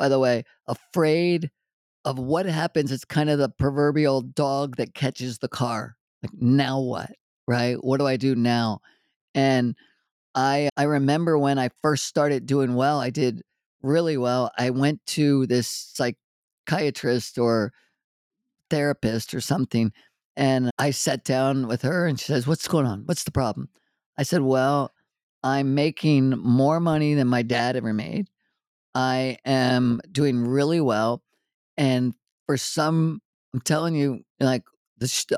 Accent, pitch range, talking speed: American, 125-150 Hz, 155 wpm